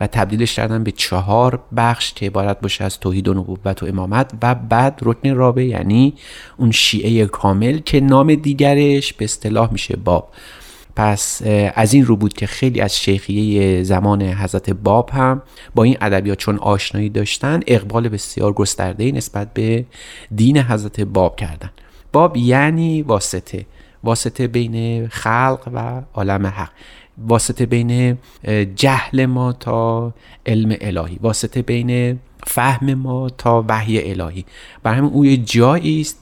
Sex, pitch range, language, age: male, 100-125 Hz, Persian, 30-49